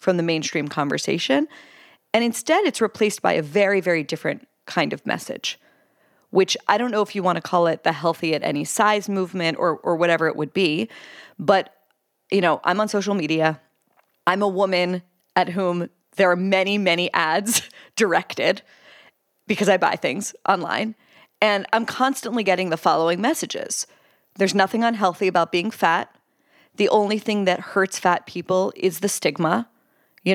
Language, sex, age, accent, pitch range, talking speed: English, female, 30-49, American, 175-230 Hz, 170 wpm